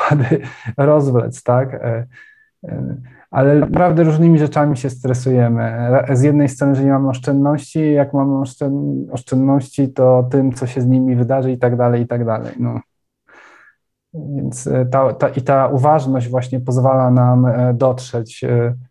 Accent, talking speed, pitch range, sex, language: native, 140 wpm, 120-135 Hz, male, Polish